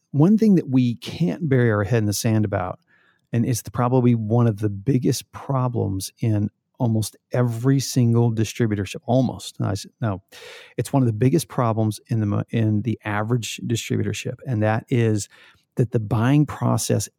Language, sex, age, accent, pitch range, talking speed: English, male, 40-59, American, 110-135 Hz, 165 wpm